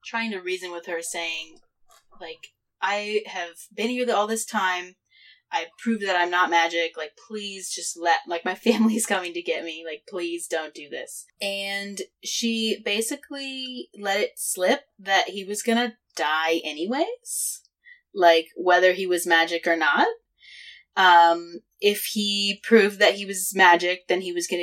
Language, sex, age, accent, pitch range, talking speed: English, female, 20-39, American, 170-250 Hz, 165 wpm